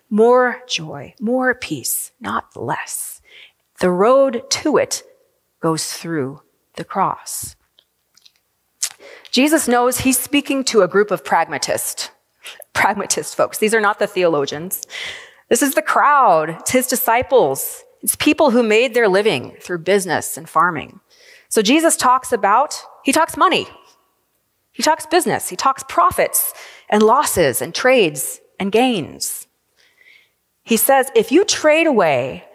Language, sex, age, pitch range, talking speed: English, female, 30-49, 185-295 Hz, 135 wpm